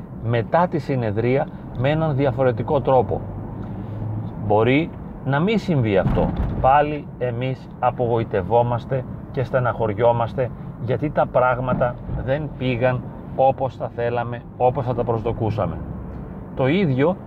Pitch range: 120-145 Hz